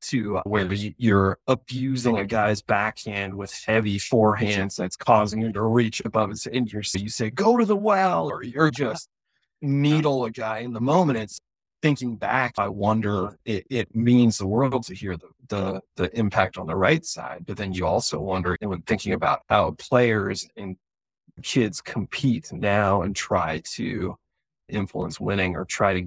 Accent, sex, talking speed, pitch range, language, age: American, male, 175 wpm, 95-120 Hz, English, 30-49